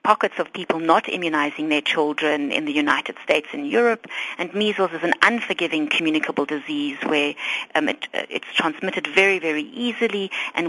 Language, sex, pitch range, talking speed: English, female, 160-215 Hz, 165 wpm